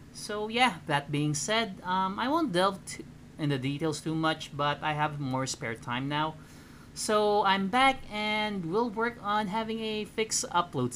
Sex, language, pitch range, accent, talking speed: male, Filipino, 140-225 Hz, native, 180 wpm